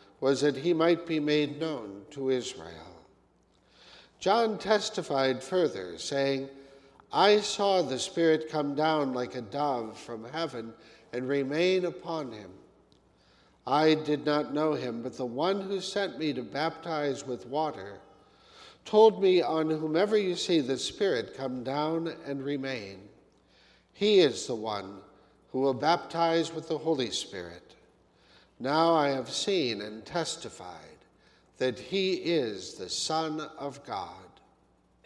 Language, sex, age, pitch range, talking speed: English, male, 60-79, 130-165 Hz, 135 wpm